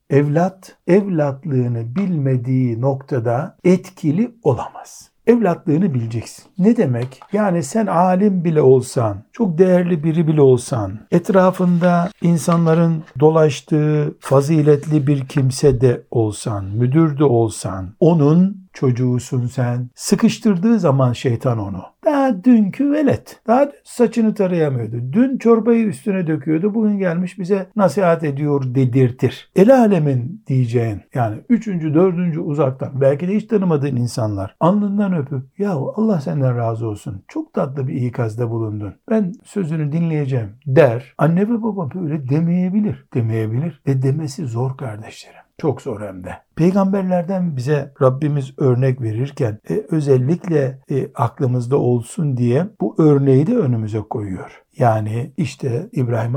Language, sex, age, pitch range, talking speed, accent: Turkish, male, 60-79, 130-185 Hz, 125 wpm, native